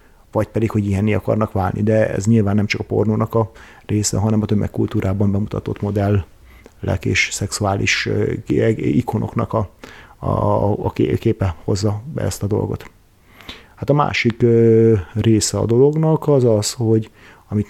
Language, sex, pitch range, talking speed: Hungarian, male, 105-115 Hz, 135 wpm